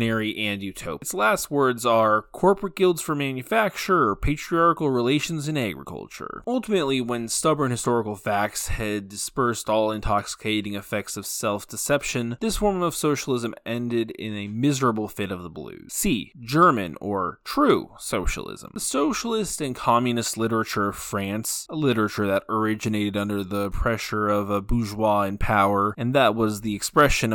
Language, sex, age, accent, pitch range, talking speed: English, male, 20-39, American, 105-135 Hz, 150 wpm